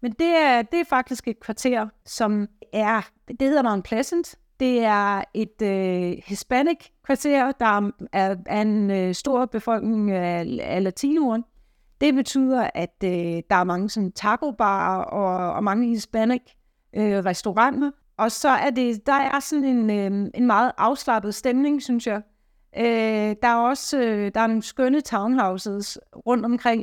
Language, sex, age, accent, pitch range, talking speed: Danish, female, 30-49, native, 200-245 Hz, 145 wpm